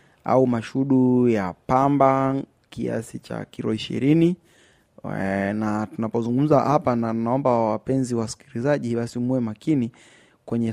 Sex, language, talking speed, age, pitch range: male, Swahili, 100 wpm, 20-39, 105-130 Hz